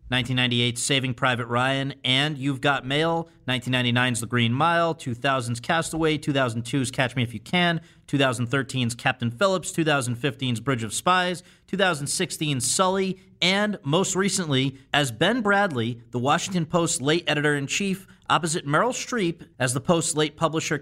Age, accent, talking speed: 40-59, American, 145 wpm